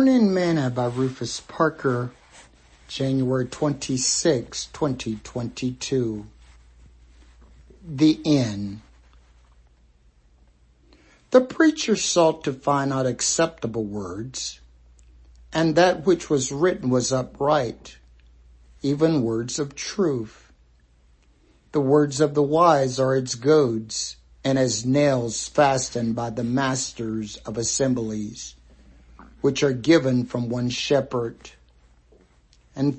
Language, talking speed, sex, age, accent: English, 95 wpm, male, 60-79, American